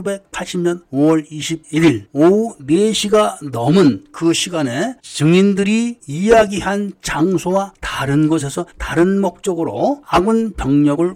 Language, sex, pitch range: Korean, male, 145-200 Hz